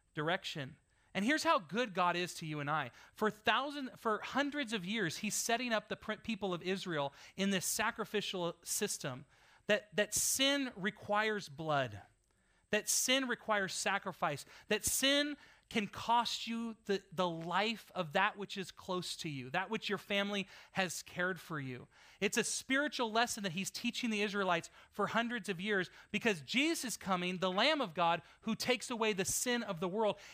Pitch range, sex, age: 175-225 Hz, male, 40-59